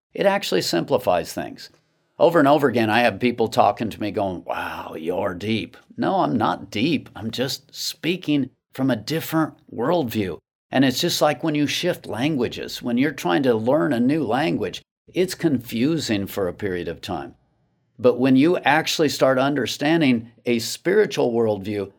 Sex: male